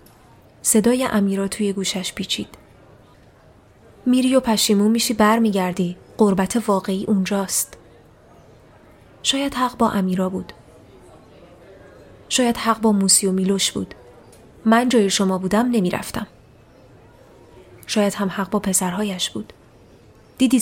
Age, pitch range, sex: 20-39, 190-225 Hz, female